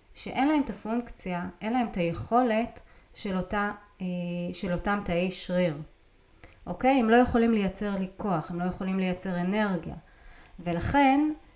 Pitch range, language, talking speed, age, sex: 175-225 Hz, Hebrew, 135 wpm, 30-49, female